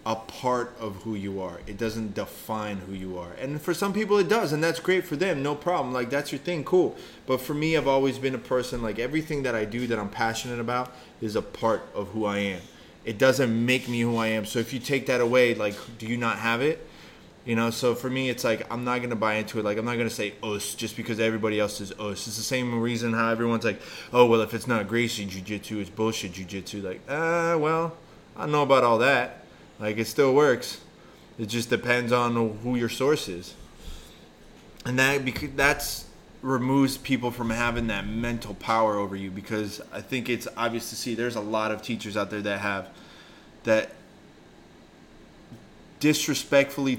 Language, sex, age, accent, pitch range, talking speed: English, male, 20-39, American, 105-130 Hz, 210 wpm